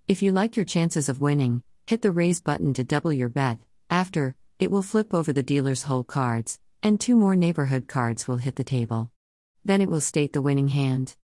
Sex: female